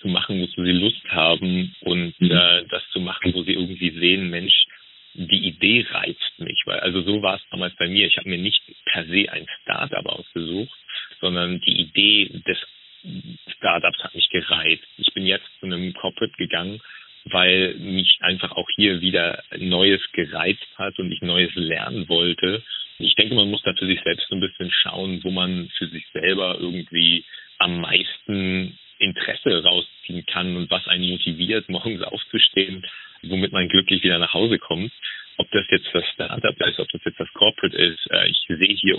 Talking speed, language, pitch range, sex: 175 wpm, German, 85-95 Hz, male